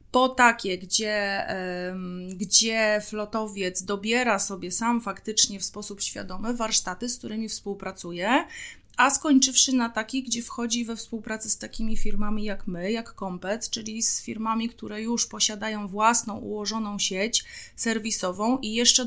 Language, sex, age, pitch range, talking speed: Polish, female, 30-49, 195-220 Hz, 135 wpm